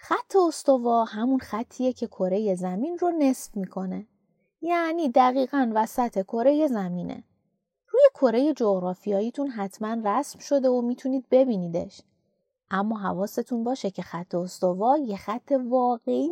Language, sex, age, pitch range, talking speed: Persian, female, 30-49, 190-275 Hz, 120 wpm